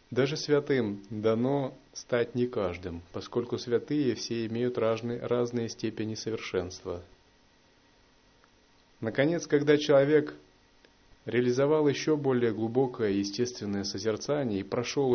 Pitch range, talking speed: 100-130 Hz, 95 wpm